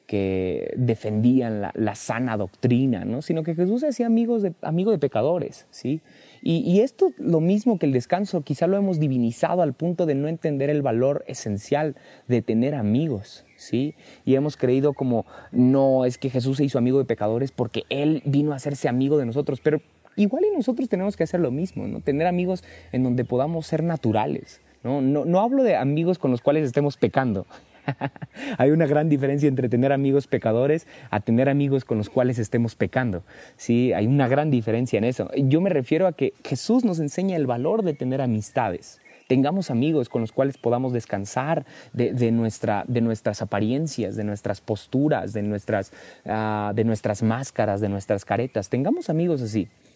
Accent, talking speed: Mexican, 185 wpm